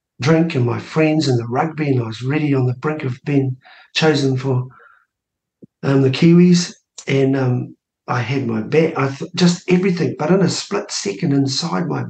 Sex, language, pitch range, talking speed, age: male, English, 135-175 Hz, 185 wpm, 50-69